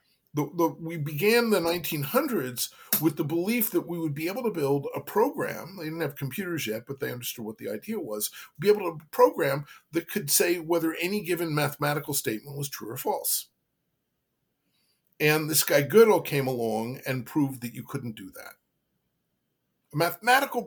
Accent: American